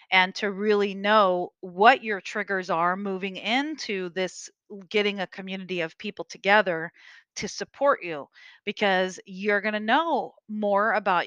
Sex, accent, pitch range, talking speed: female, American, 195-230 Hz, 140 wpm